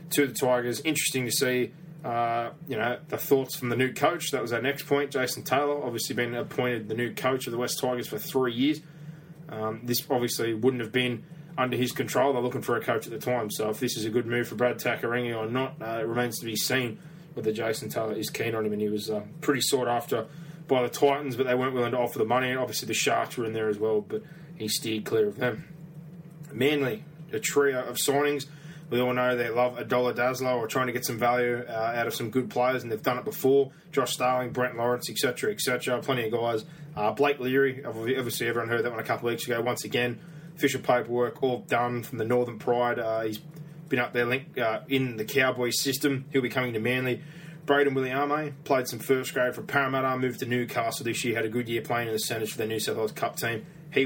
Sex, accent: male, Australian